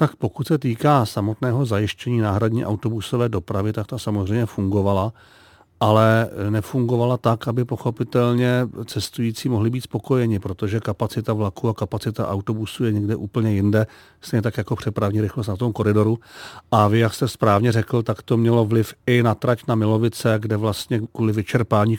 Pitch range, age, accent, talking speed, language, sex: 110-125 Hz, 40-59, native, 160 wpm, Czech, male